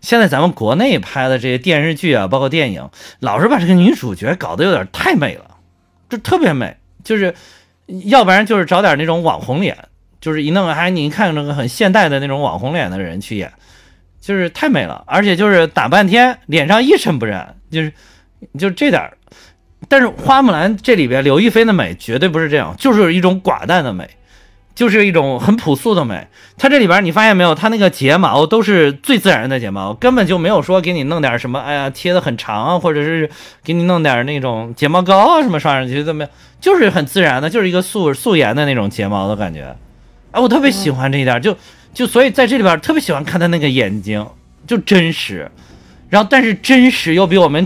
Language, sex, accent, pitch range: Chinese, male, native, 140-205 Hz